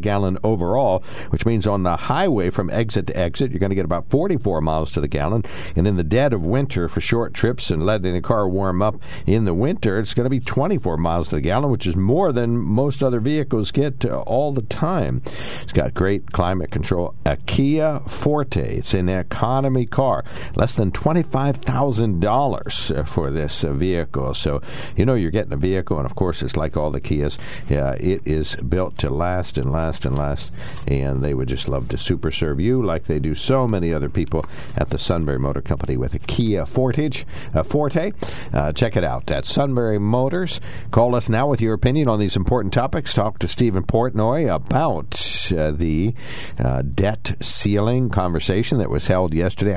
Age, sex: 60-79, male